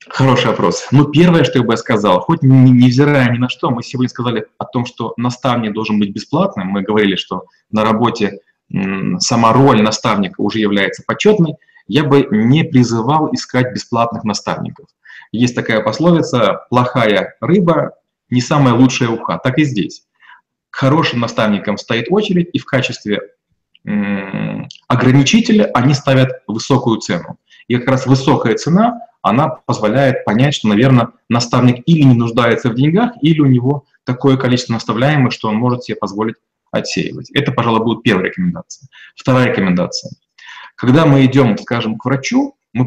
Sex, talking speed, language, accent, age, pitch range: male, 150 wpm, Russian, native, 20-39, 115-145 Hz